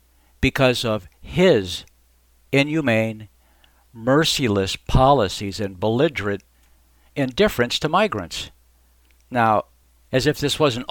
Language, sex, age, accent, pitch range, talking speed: English, male, 60-79, American, 85-130 Hz, 90 wpm